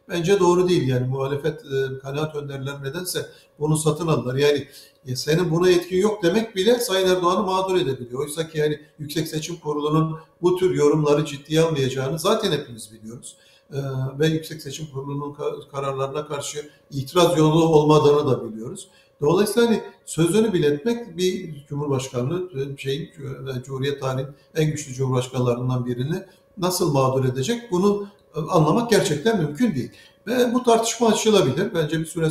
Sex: male